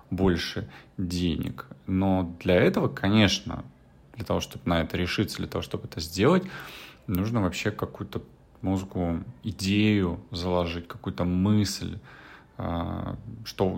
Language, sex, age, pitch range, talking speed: Russian, male, 30-49, 90-110 Hz, 110 wpm